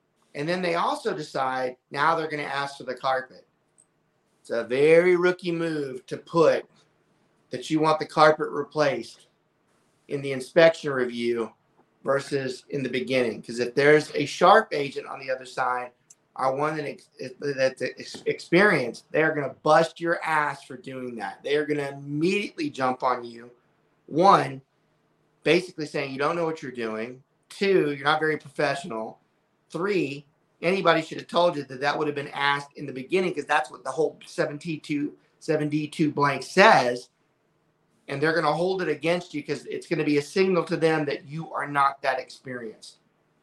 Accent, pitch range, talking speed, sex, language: American, 130-160 Hz, 175 wpm, male, English